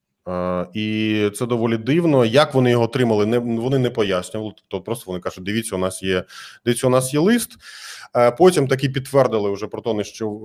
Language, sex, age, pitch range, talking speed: Ukrainian, male, 20-39, 115-150 Hz, 190 wpm